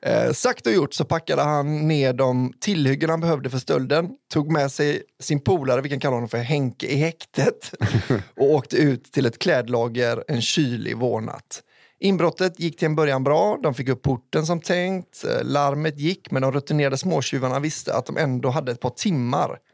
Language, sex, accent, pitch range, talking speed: English, male, Swedish, 130-175 Hz, 190 wpm